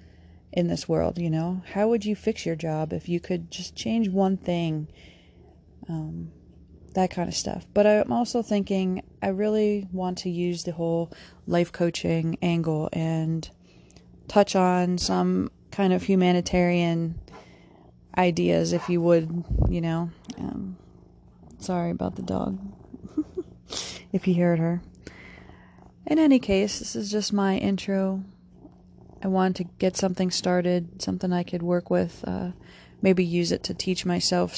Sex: female